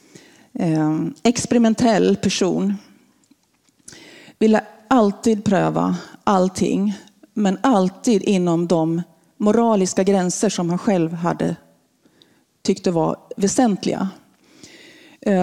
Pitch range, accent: 195-260 Hz, native